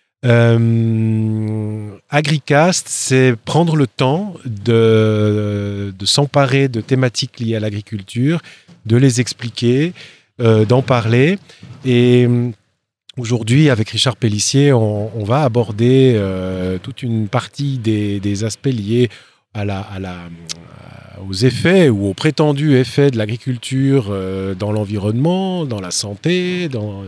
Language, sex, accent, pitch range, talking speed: English, male, French, 110-140 Hz, 125 wpm